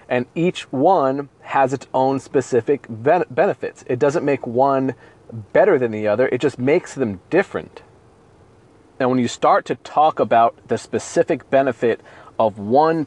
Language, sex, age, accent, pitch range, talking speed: English, male, 30-49, American, 115-145 Hz, 150 wpm